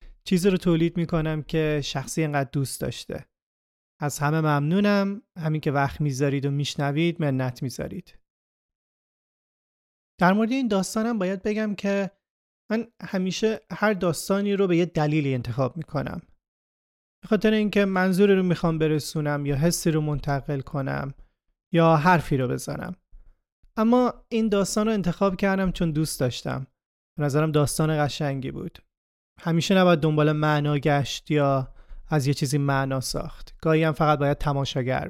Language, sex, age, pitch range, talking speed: Persian, male, 30-49, 145-195 Hz, 140 wpm